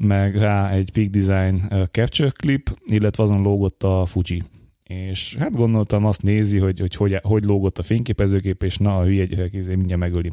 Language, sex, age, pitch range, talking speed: Hungarian, male, 30-49, 100-120 Hz, 180 wpm